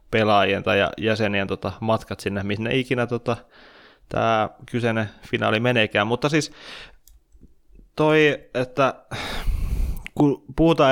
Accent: native